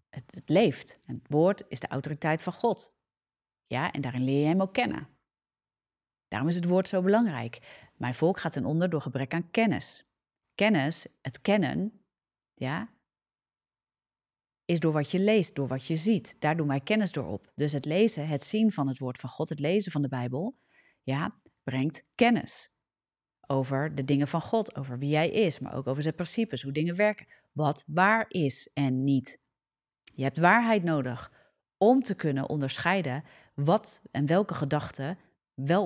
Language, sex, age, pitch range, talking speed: Dutch, female, 30-49, 140-195 Hz, 175 wpm